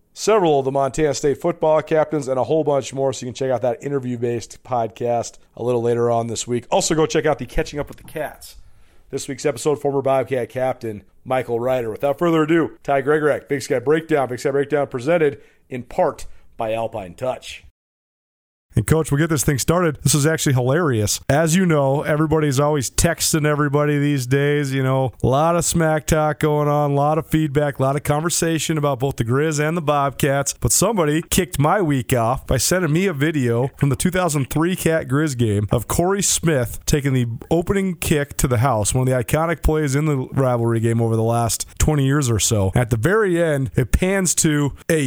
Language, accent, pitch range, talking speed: English, American, 125-160 Hz, 210 wpm